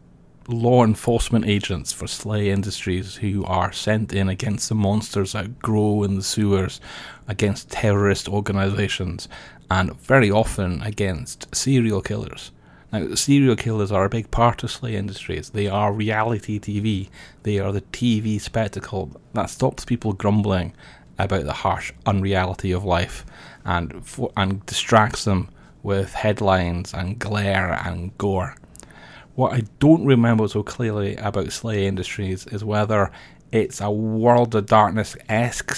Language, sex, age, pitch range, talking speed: English, male, 30-49, 95-110 Hz, 140 wpm